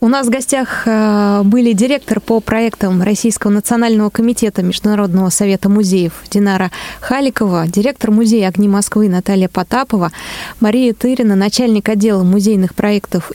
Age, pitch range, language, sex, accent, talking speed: 20-39, 185-225 Hz, Russian, female, native, 125 wpm